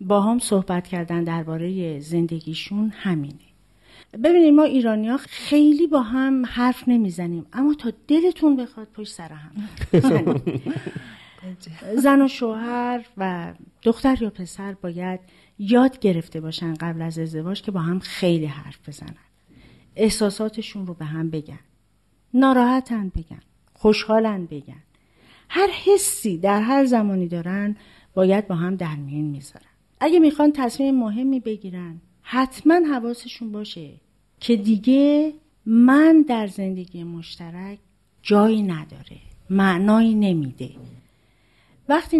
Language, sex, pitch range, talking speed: Persian, female, 175-240 Hz, 115 wpm